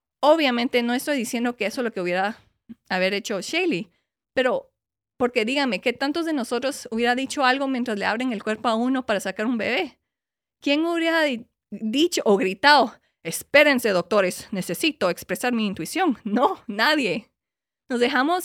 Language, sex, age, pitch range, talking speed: English, female, 30-49, 205-270 Hz, 160 wpm